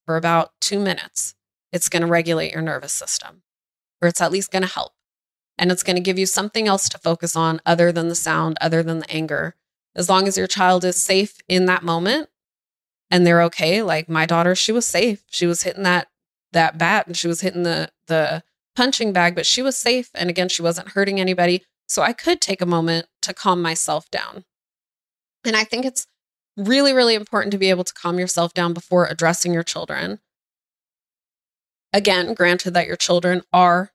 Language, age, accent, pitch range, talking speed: English, 20-39, American, 170-200 Hz, 200 wpm